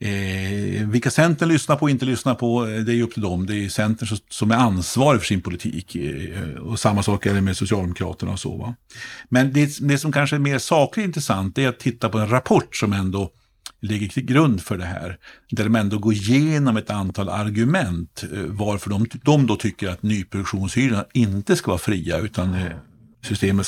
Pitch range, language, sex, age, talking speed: 95-120 Hz, Swedish, male, 50-69, 205 wpm